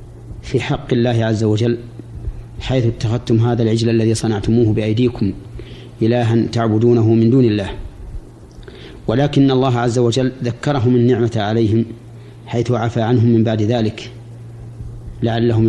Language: Arabic